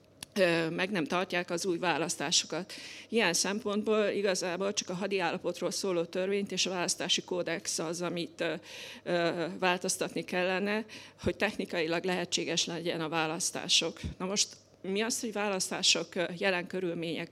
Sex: female